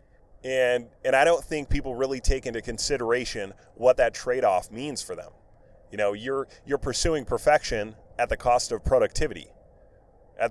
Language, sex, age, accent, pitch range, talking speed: English, male, 30-49, American, 105-140 Hz, 160 wpm